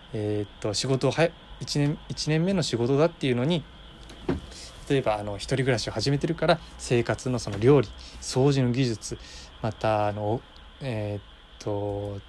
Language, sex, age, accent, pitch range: Japanese, male, 20-39, native, 110-170 Hz